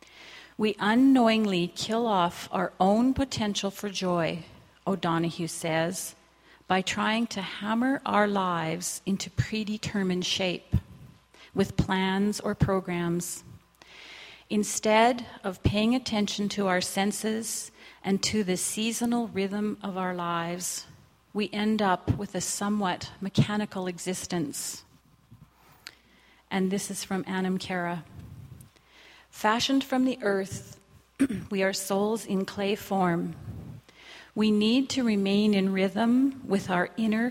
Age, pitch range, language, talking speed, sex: 40-59, 180-215 Hz, English, 115 wpm, female